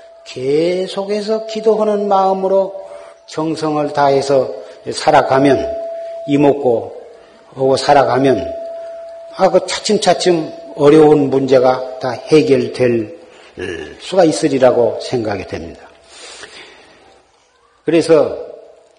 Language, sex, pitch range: Korean, male, 130-220 Hz